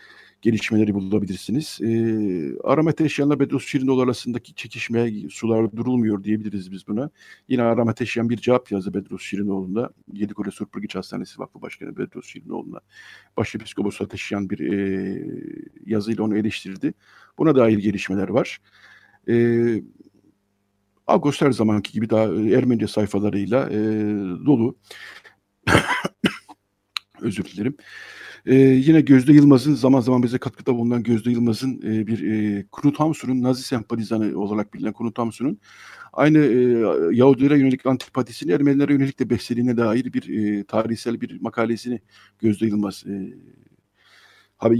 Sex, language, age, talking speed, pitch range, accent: male, Turkish, 60-79, 125 wpm, 105-130 Hz, native